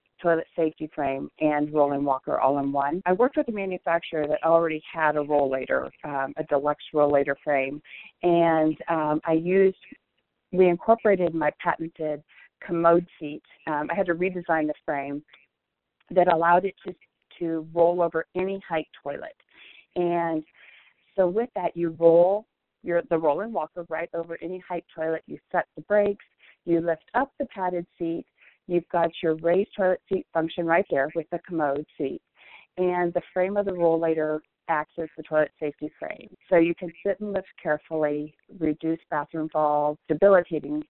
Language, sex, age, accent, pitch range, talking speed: English, female, 40-59, American, 155-185 Hz, 170 wpm